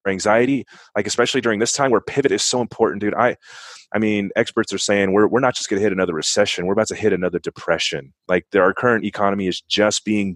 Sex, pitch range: male, 90-110 Hz